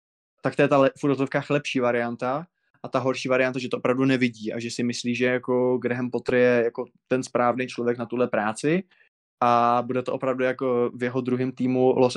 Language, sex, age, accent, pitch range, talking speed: Czech, male, 20-39, native, 120-130 Hz, 205 wpm